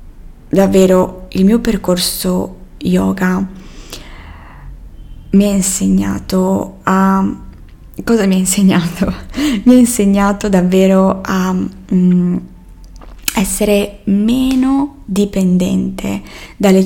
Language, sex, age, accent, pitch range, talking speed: Italian, female, 20-39, native, 175-210 Hz, 75 wpm